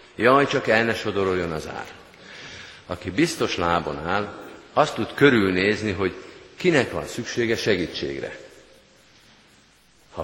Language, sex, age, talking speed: Hungarian, male, 50-69, 115 wpm